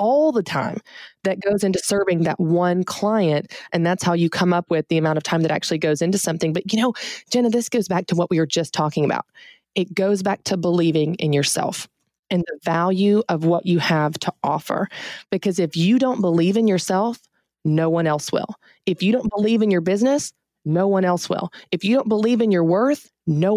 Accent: American